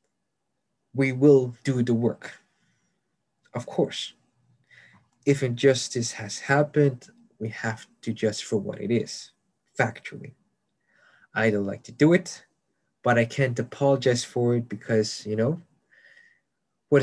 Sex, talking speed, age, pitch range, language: male, 125 wpm, 20-39, 115-140 Hz, English